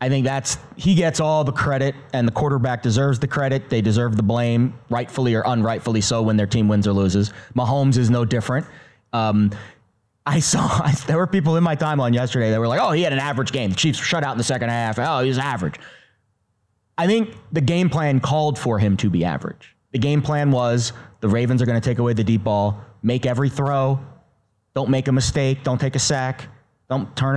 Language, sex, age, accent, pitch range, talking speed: English, male, 30-49, American, 110-140 Hz, 220 wpm